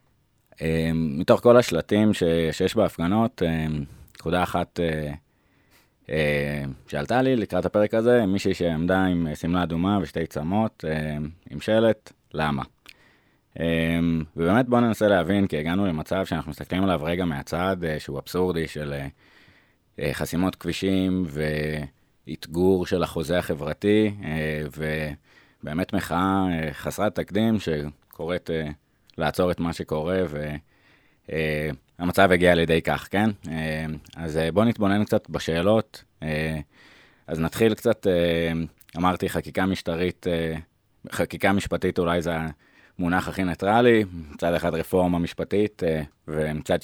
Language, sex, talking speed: Hebrew, male, 120 wpm